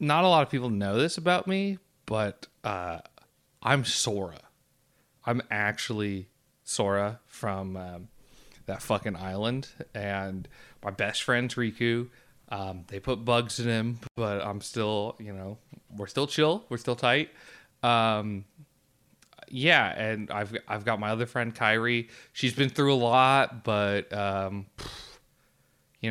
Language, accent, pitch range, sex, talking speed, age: English, American, 105-135 Hz, male, 140 wpm, 30-49